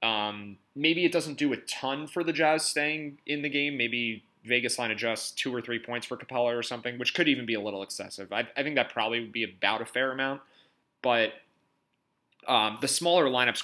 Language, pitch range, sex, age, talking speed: English, 105-125 Hz, male, 20-39, 215 wpm